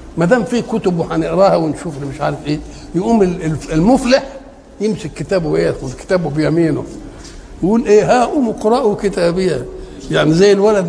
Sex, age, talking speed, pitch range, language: male, 60-79, 145 wpm, 155-210 Hz, Arabic